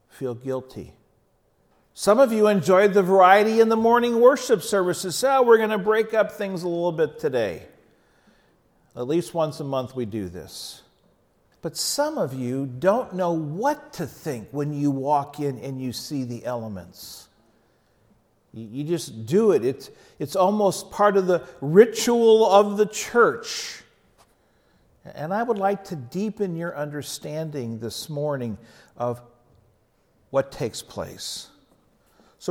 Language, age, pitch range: English, 50-69, 135-210 Hz